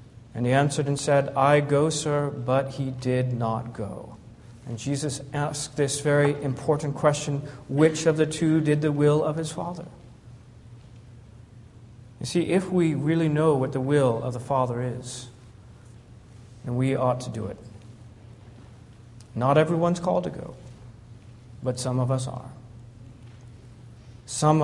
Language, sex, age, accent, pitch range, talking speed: English, male, 40-59, American, 120-145 Hz, 145 wpm